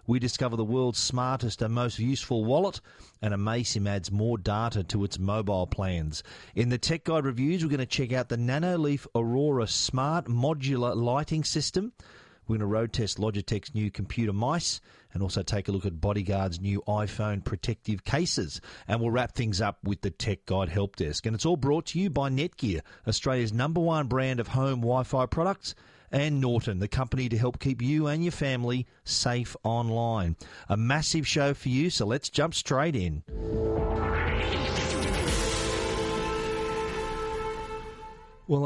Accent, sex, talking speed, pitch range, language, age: Australian, male, 165 wpm, 105-140 Hz, English, 40-59